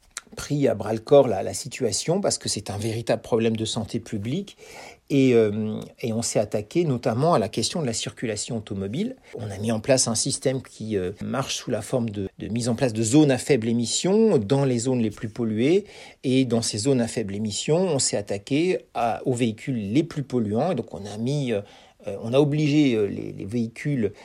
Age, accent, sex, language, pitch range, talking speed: 40-59, French, male, French, 110-135 Hz, 210 wpm